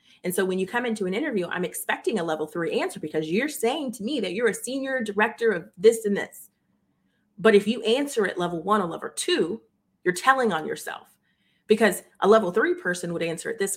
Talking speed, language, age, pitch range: 220 wpm, English, 30-49, 180-230 Hz